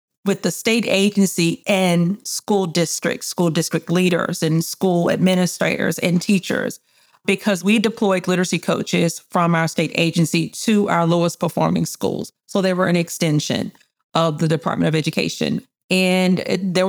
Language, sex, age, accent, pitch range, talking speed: English, female, 40-59, American, 170-205 Hz, 145 wpm